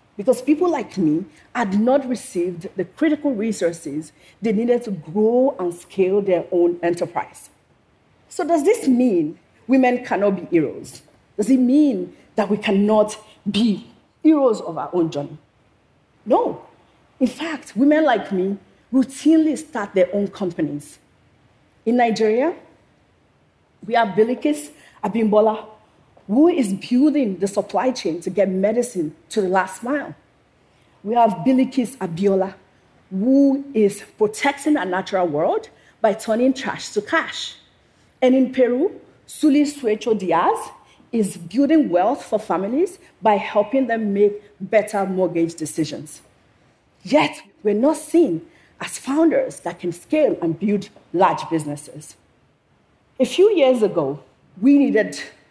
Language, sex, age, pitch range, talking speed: English, female, 40-59, 185-270 Hz, 130 wpm